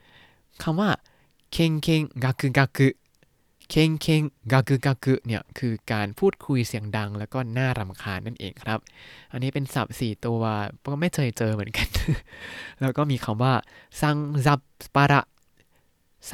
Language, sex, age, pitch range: Thai, male, 20-39, 110-145 Hz